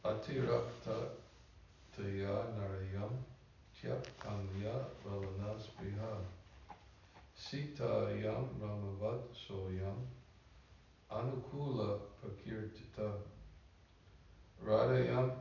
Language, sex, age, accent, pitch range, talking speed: English, male, 60-79, American, 95-120 Hz, 45 wpm